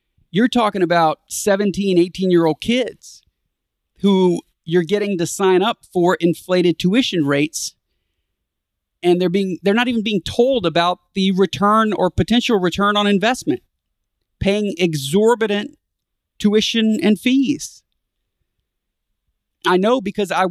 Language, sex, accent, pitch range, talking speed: English, male, American, 165-220 Hz, 120 wpm